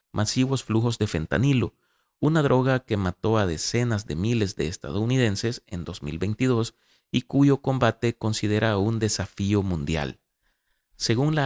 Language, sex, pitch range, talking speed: Spanish, male, 95-120 Hz, 130 wpm